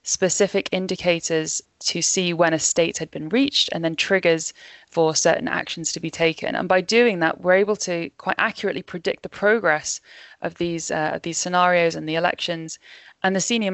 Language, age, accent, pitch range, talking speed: English, 20-39, British, 160-185 Hz, 185 wpm